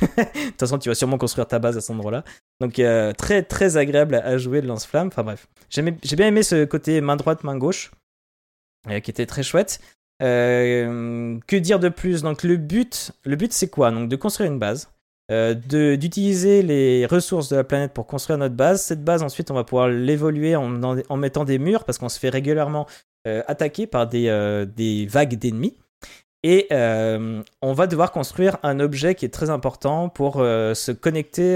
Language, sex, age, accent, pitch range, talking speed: French, male, 20-39, French, 115-155 Hz, 205 wpm